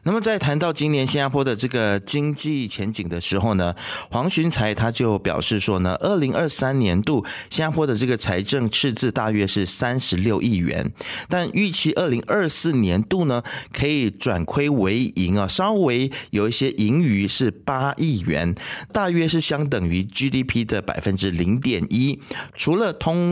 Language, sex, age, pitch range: Chinese, male, 30-49, 100-150 Hz